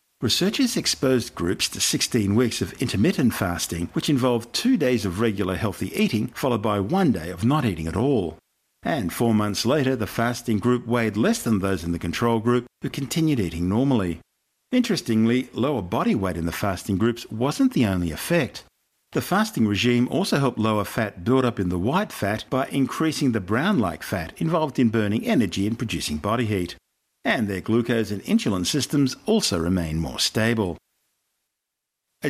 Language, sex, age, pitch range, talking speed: English, male, 50-69, 100-130 Hz, 175 wpm